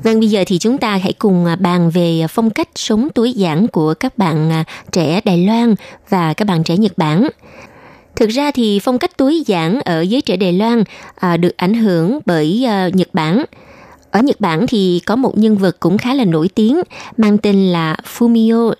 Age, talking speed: 20-39, 200 wpm